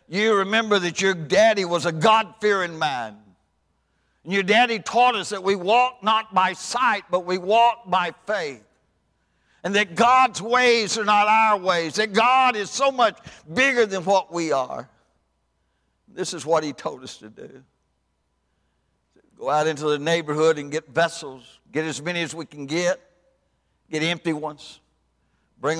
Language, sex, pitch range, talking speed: English, male, 135-195 Hz, 165 wpm